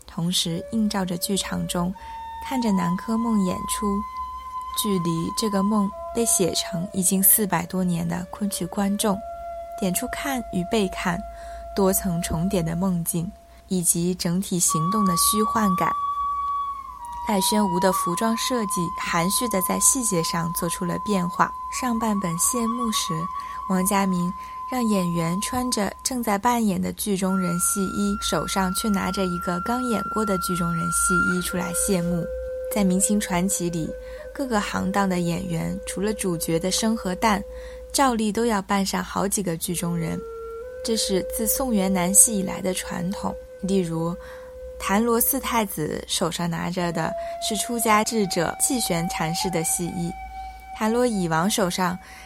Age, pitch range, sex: 20-39, 175-230 Hz, female